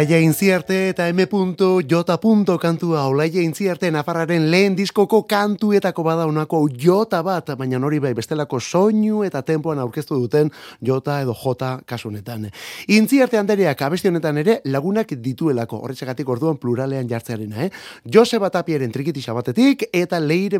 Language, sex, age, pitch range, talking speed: Spanish, male, 30-49, 130-190 Hz, 130 wpm